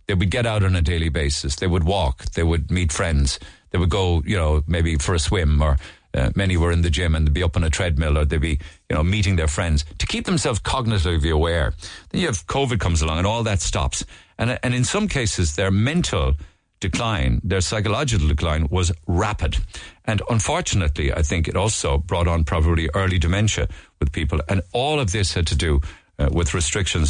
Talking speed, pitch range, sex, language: 215 wpm, 80-100 Hz, male, English